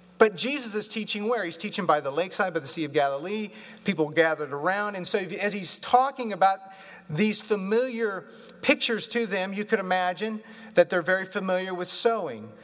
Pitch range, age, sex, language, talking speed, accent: 160-205 Hz, 40-59, male, English, 180 wpm, American